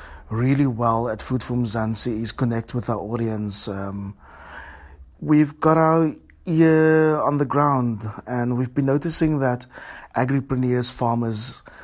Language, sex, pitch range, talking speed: English, male, 115-135 Hz, 130 wpm